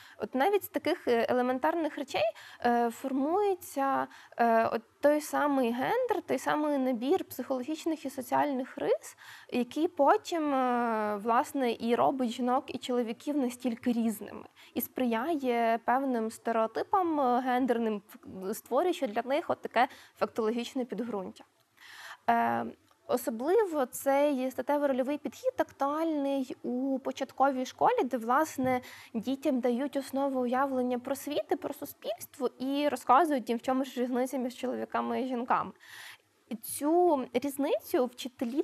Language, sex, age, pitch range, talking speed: Ukrainian, female, 20-39, 245-300 Hz, 110 wpm